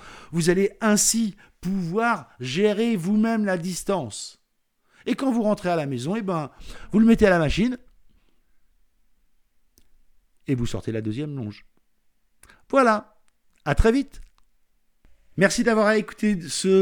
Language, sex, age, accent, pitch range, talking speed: French, male, 50-69, French, 155-210 Hz, 130 wpm